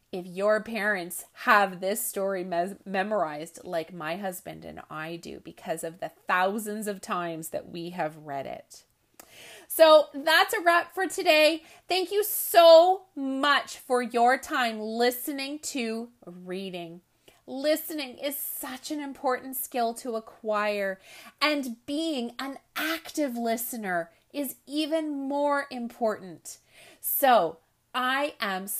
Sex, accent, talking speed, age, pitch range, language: female, American, 125 wpm, 30-49, 210-305 Hz, English